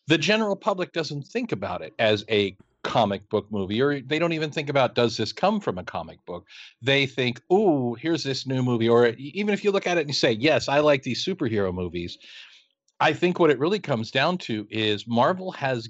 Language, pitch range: English, 110-155 Hz